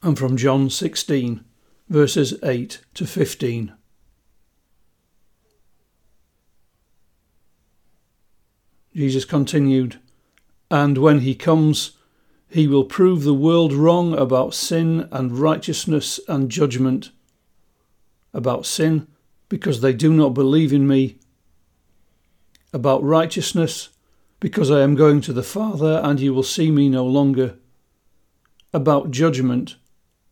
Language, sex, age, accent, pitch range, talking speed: English, male, 50-69, British, 125-155 Hz, 105 wpm